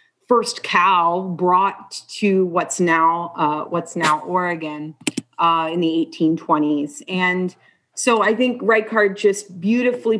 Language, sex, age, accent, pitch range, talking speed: English, female, 30-49, American, 170-210 Hz, 125 wpm